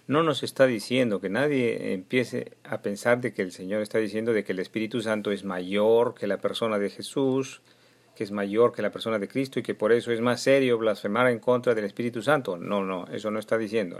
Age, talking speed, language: 40-59, 230 wpm, Spanish